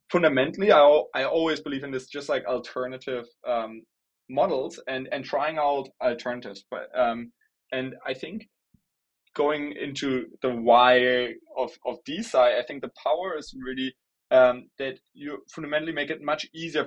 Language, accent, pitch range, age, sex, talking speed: English, German, 125-145 Hz, 20-39, male, 155 wpm